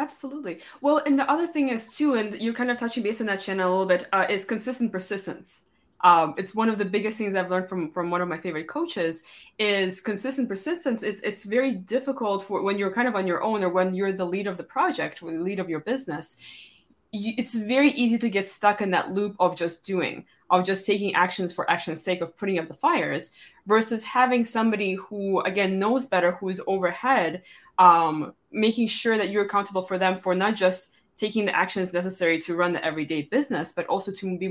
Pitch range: 175-215 Hz